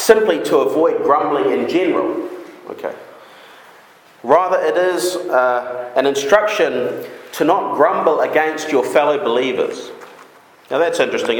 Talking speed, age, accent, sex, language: 120 wpm, 40-59, Australian, male, English